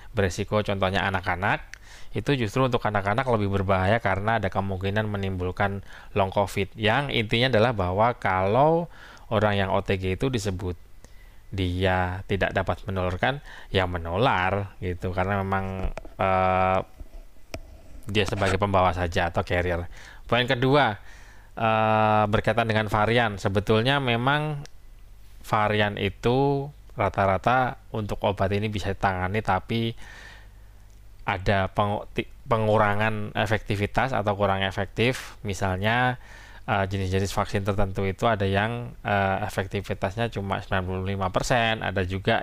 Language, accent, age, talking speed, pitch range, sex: Indonesian, native, 20-39, 105 wpm, 95-110 Hz, male